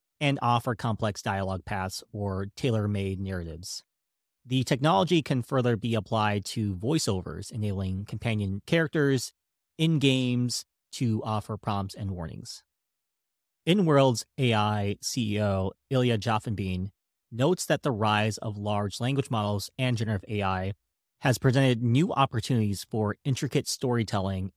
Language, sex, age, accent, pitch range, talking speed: English, male, 30-49, American, 100-130 Hz, 120 wpm